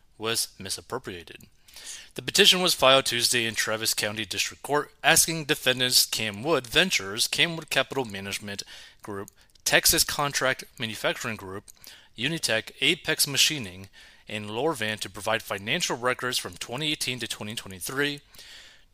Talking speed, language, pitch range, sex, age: 125 wpm, English, 105-140 Hz, male, 30-49